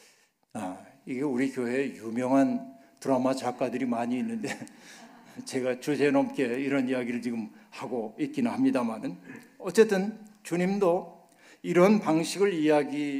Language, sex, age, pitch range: Korean, male, 60-79, 145-205 Hz